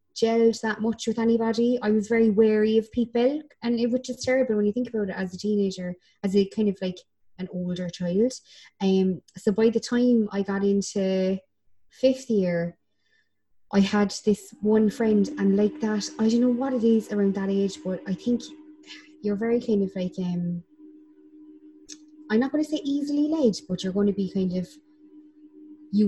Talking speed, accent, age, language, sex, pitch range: 190 wpm, Irish, 20-39, English, female, 185-245 Hz